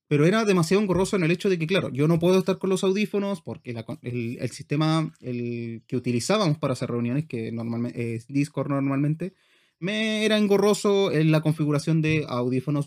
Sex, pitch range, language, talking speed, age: male, 120-150 Hz, Spanish, 185 wpm, 20-39